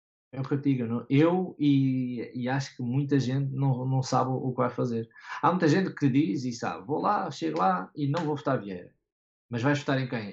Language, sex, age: Portuguese, male, 20-39